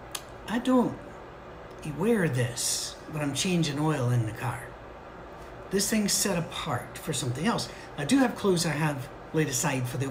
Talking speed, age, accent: 165 wpm, 60-79, American